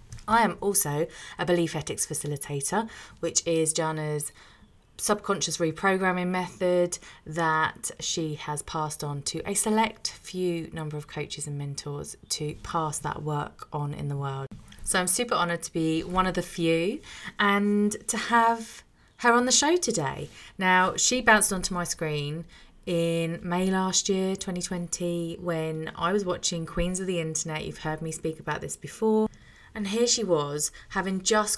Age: 30-49